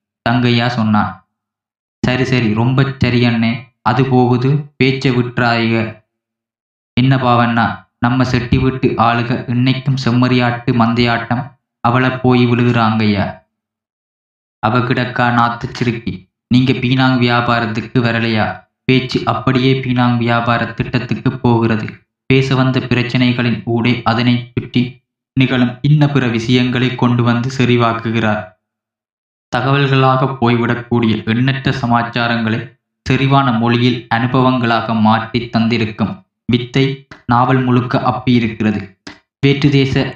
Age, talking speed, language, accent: 20-39, 95 wpm, Tamil, native